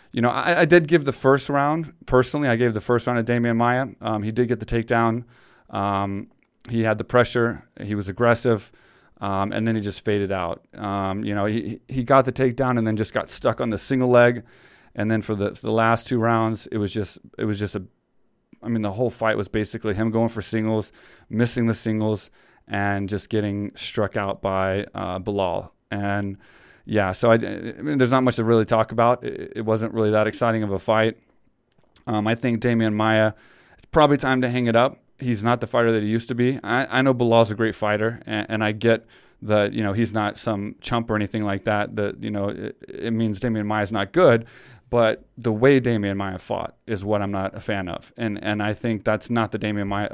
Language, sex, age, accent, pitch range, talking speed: English, male, 30-49, American, 105-120 Hz, 230 wpm